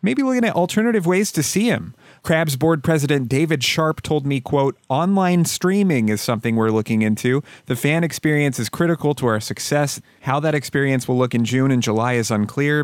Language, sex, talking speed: English, male, 195 wpm